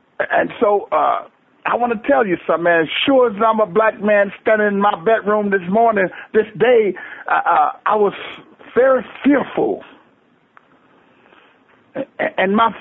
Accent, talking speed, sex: American, 150 wpm, male